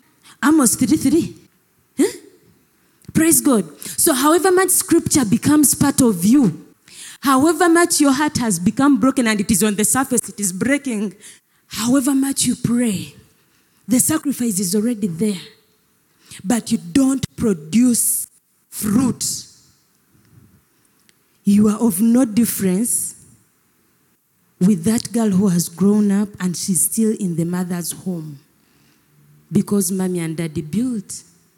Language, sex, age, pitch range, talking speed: English, female, 20-39, 190-255 Hz, 125 wpm